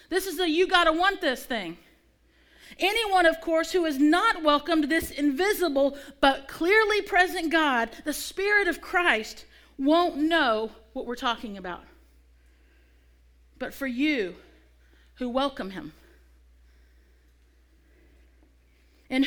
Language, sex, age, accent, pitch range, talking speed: English, female, 40-59, American, 220-335 Hz, 110 wpm